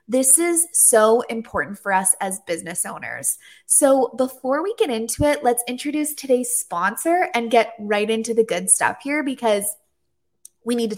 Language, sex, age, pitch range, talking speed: English, female, 20-39, 215-295 Hz, 170 wpm